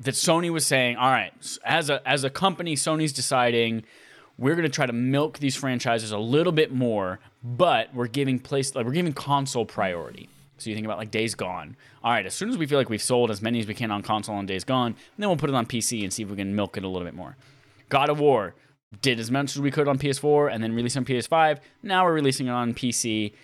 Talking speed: 255 wpm